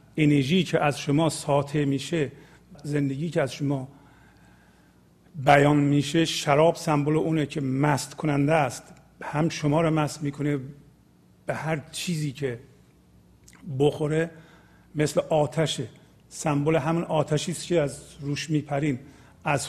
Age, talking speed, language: 50-69, 120 wpm, Persian